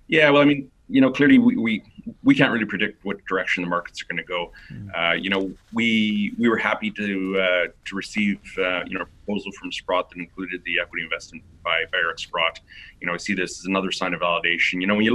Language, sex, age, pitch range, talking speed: English, male, 30-49, 90-105 Hz, 245 wpm